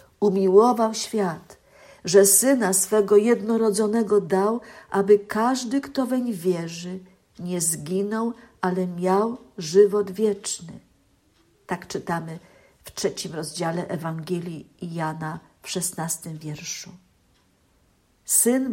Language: Polish